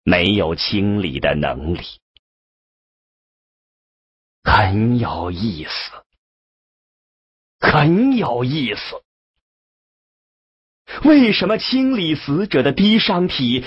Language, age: English, 40-59